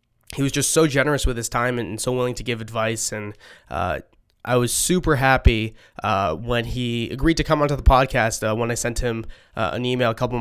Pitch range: 115-140 Hz